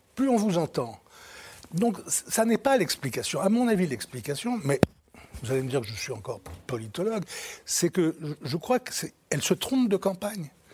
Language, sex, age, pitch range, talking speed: French, male, 60-79, 140-215 Hz, 180 wpm